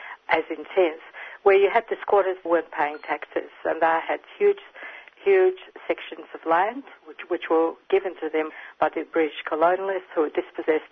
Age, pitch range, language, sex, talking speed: 50-69, 160-200 Hz, English, female, 165 wpm